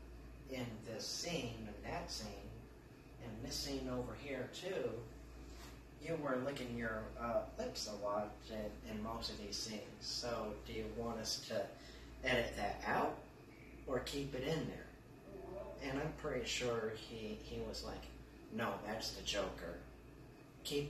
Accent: American